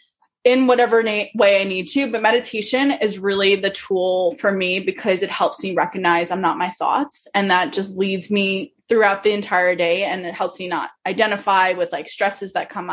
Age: 10-29